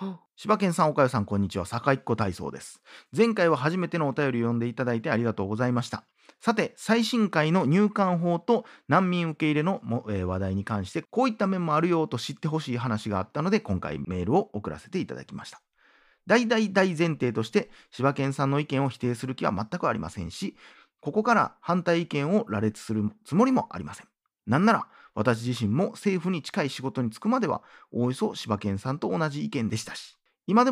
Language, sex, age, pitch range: Japanese, male, 40-59, 115-190 Hz